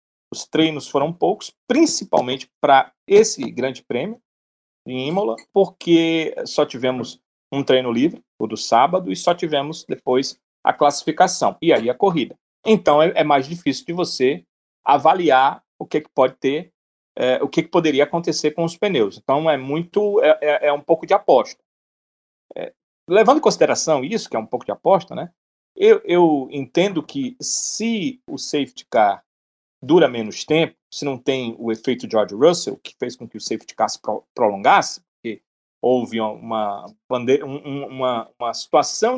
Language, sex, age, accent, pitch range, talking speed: Portuguese, male, 40-59, Brazilian, 125-180 Hz, 160 wpm